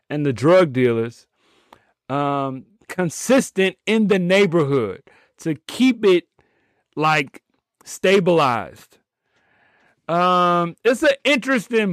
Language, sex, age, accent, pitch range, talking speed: English, male, 30-49, American, 150-190 Hz, 90 wpm